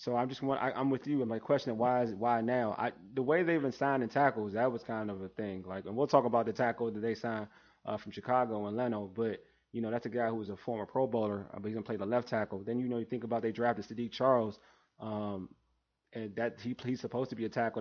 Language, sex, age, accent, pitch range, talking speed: English, male, 20-39, American, 110-130 Hz, 285 wpm